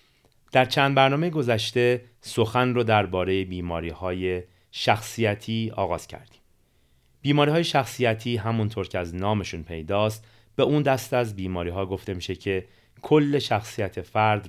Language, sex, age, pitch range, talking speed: Persian, male, 30-49, 95-125 Hz, 135 wpm